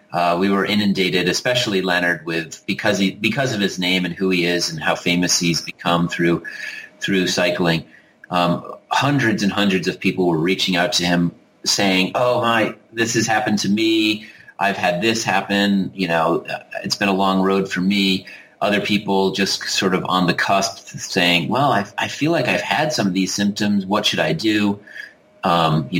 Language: English